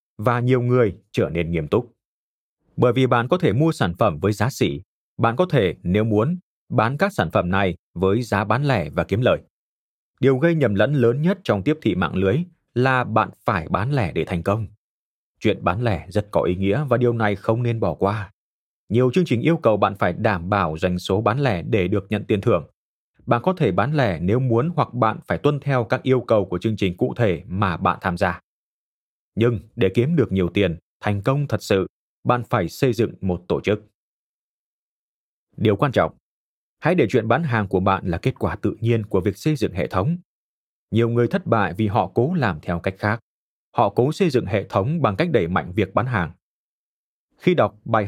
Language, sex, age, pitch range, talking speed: Vietnamese, male, 20-39, 95-130 Hz, 220 wpm